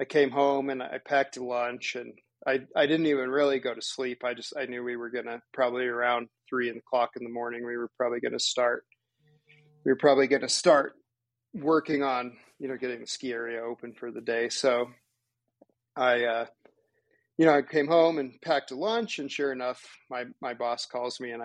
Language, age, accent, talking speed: English, 40-59, American, 215 wpm